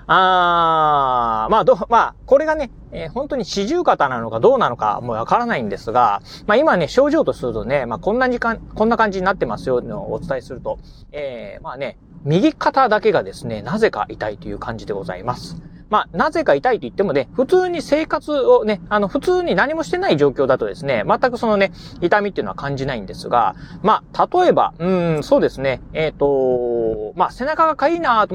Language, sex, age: Japanese, male, 30-49